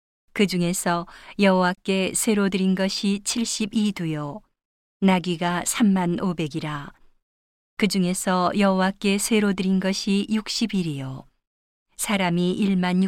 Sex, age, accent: female, 40-59, native